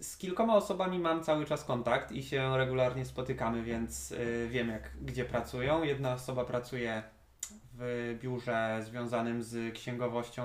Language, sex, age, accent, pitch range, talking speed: Polish, male, 20-39, native, 120-135 Hz, 130 wpm